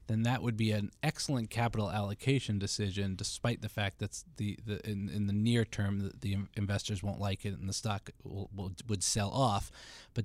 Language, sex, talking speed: English, male, 205 wpm